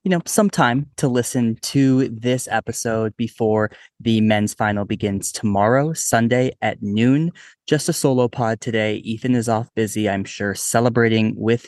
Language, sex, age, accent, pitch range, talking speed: English, male, 20-39, American, 105-125 Hz, 160 wpm